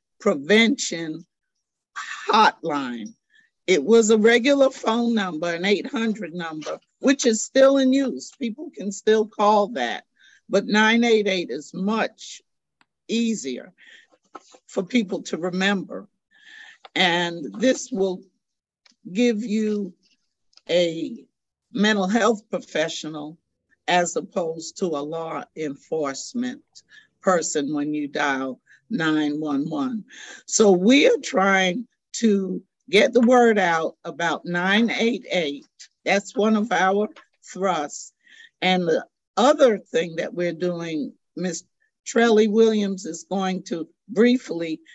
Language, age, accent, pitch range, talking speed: English, 50-69, American, 175-240 Hz, 110 wpm